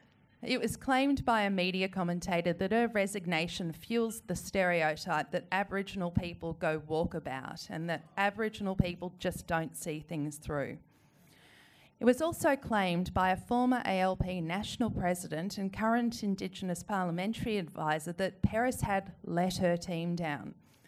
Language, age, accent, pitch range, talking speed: English, 40-59, Australian, 165-210 Hz, 145 wpm